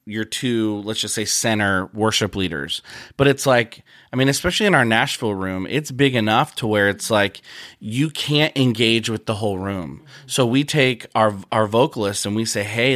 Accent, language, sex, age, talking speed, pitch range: American, English, male, 30-49, 195 wpm, 100-125 Hz